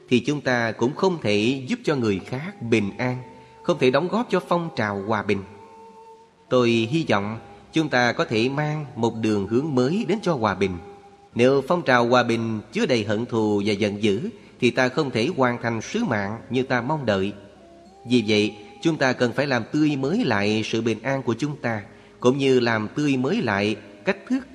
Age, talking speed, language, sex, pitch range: 30-49, 210 wpm, Vietnamese, male, 110-150 Hz